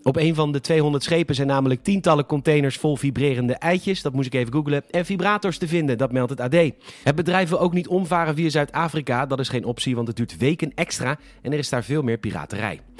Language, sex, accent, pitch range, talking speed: Dutch, male, Dutch, 125-170 Hz, 230 wpm